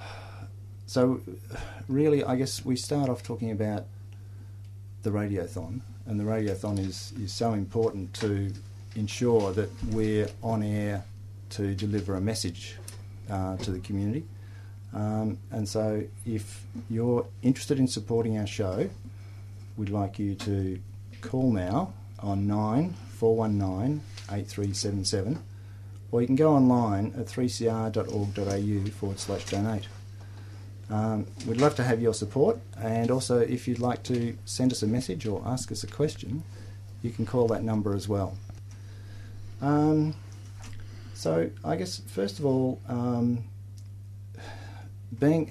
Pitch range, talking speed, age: 100-115 Hz, 140 wpm, 50-69